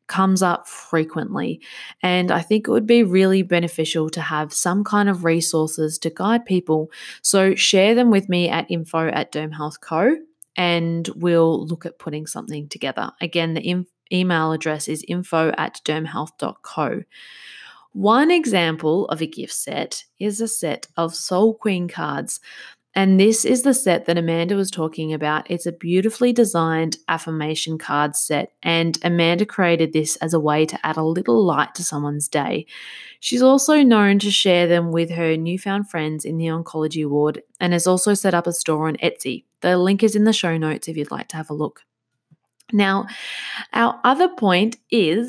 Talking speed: 175 wpm